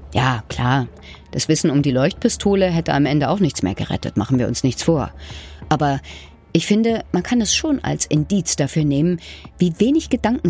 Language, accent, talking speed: German, German, 190 wpm